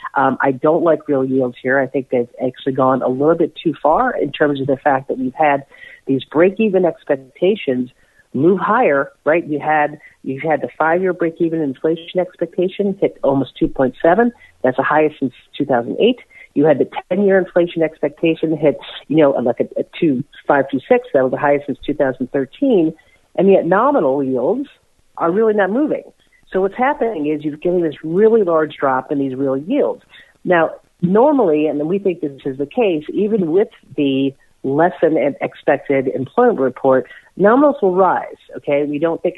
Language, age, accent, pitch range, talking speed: English, 40-59, American, 135-185 Hz, 190 wpm